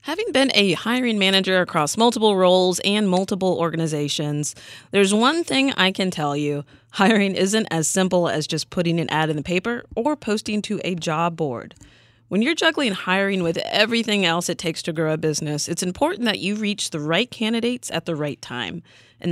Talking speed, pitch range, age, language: 195 wpm, 150-200 Hz, 30-49, English